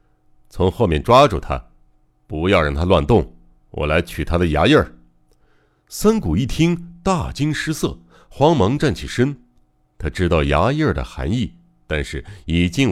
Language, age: Chinese, 60-79